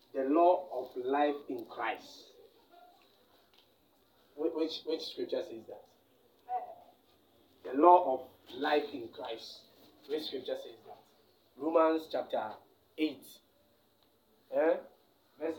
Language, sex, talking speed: English, male, 105 wpm